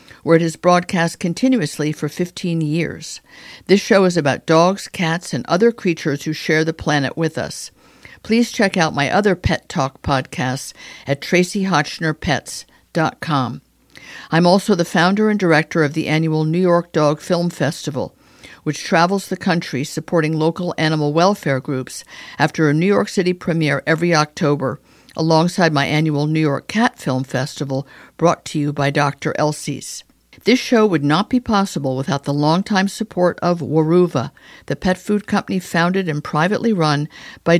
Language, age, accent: English, 50-69, American